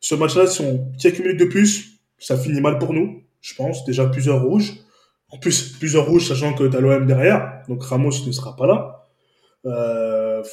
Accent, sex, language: French, male, French